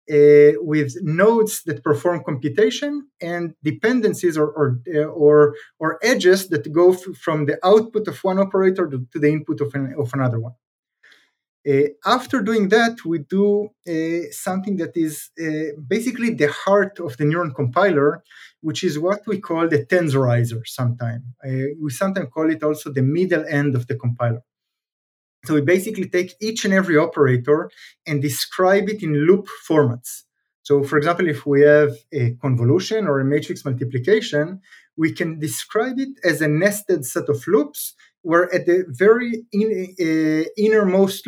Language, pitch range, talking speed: English, 145-190 Hz, 155 wpm